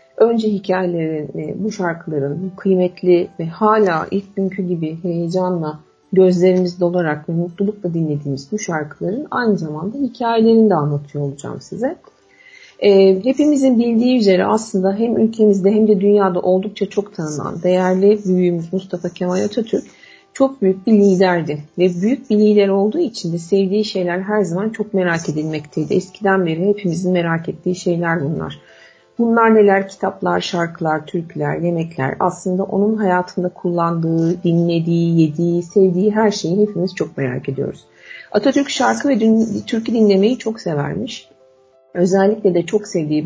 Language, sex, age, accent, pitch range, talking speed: Turkish, female, 50-69, native, 170-210 Hz, 135 wpm